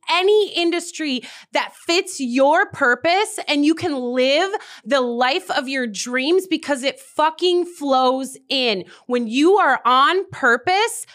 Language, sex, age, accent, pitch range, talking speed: English, female, 30-49, American, 245-335 Hz, 135 wpm